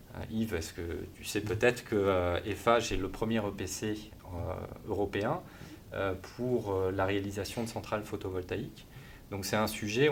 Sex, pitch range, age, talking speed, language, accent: male, 90-110 Hz, 30-49, 165 wpm, French, French